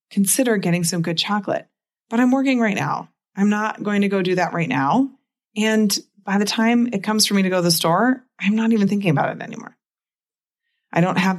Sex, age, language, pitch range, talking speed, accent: female, 30-49, English, 160-220 Hz, 220 wpm, American